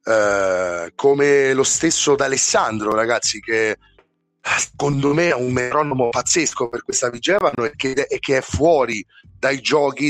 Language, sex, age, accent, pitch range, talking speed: Italian, male, 30-49, native, 115-150 Hz, 125 wpm